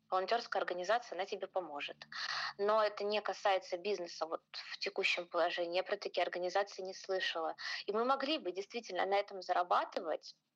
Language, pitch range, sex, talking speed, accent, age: Russian, 195-250 Hz, female, 160 wpm, native, 20-39